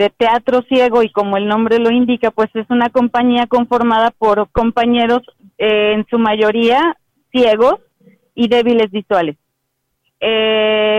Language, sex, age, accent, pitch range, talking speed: Spanish, female, 30-49, Mexican, 195-235 Hz, 135 wpm